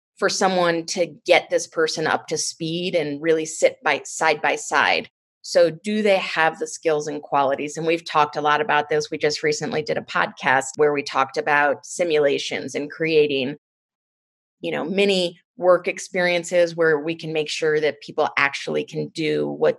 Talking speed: 180 wpm